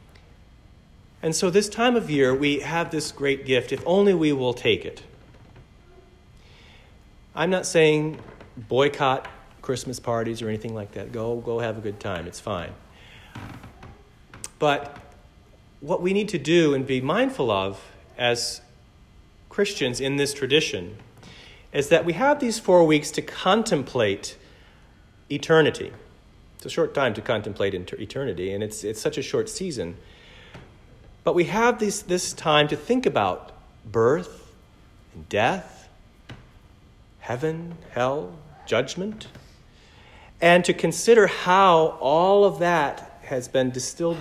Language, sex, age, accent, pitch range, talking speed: English, male, 40-59, American, 115-165 Hz, 135 wpm